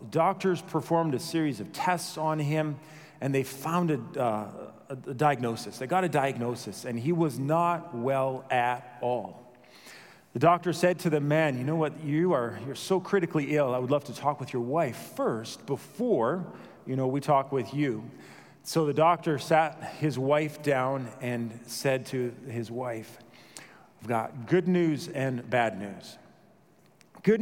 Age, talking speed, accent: 40-59, 165 wpm, American